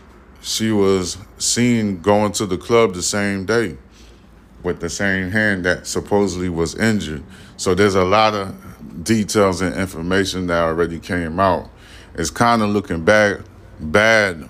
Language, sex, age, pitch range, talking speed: English, male, 30-49, 85-100 Hz, 150 wpm